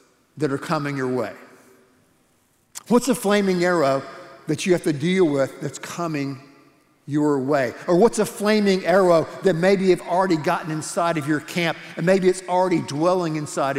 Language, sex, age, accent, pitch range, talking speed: English, male, 50-69, American, 145-185 Hz, 170 wpm